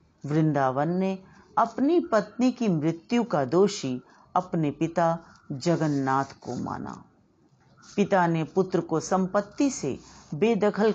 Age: 50-69